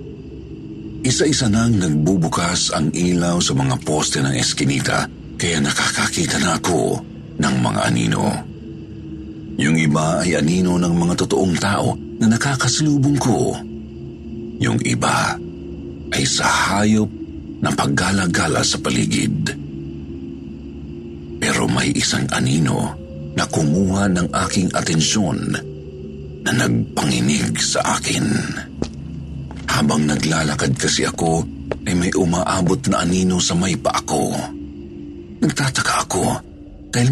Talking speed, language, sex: 105 wpm, Filipino, male